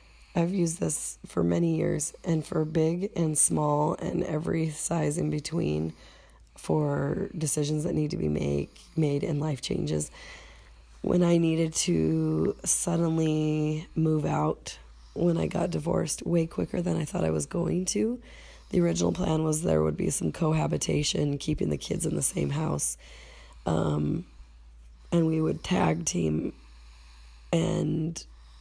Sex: female